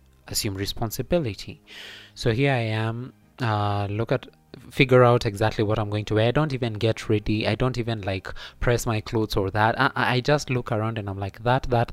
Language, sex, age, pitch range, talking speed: English, male, 20-39, 100-120 Hz, 205 wpm